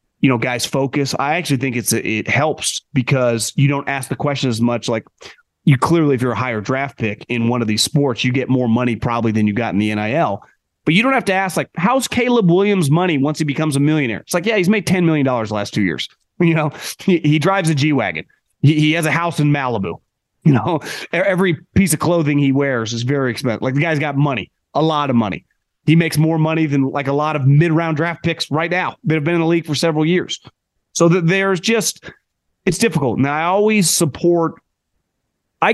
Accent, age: American, 30-49